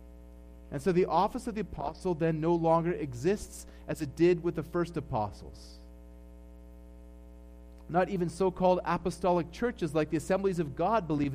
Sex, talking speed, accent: male, 155 wpm, American